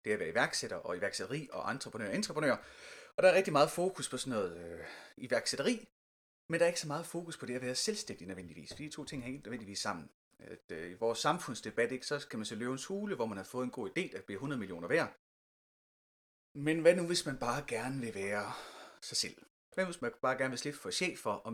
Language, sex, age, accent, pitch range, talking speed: Danish, male, 30-49, native, 105-175 Hz, 240 wpm